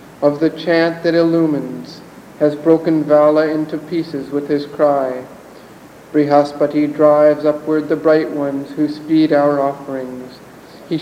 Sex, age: male, 50-69